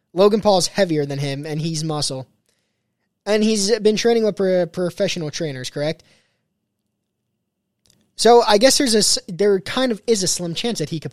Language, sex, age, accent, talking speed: English, male, 20-39, American, 175 wpm